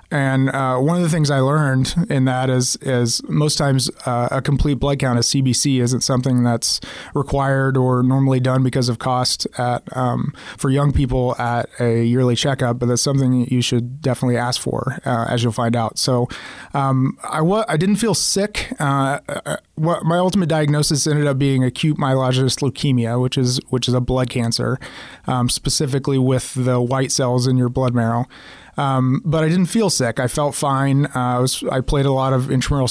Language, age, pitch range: English, 30-49, 125-140 Hz